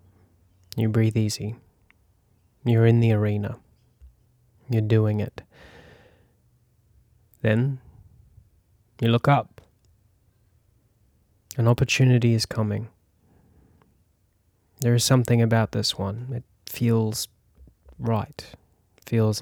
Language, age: English, 20-39